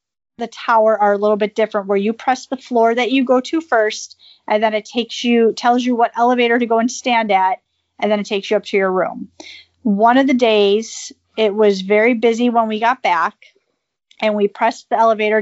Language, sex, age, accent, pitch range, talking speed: English, female, 40-59, American, 205-240 Hz, 220 wpm